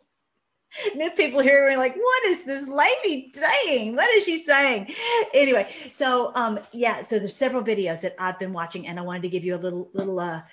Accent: American